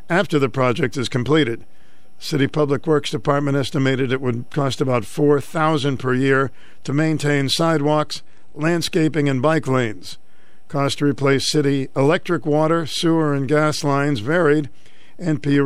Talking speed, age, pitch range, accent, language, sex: 140 wpm, 50-69, 135-155 Hz, American, English, male